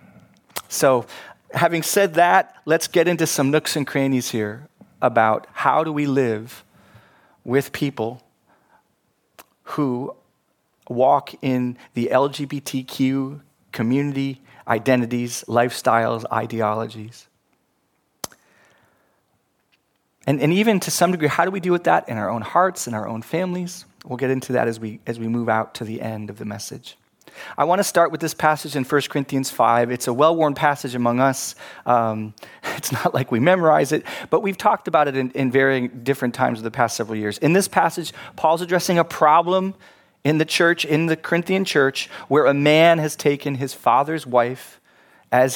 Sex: male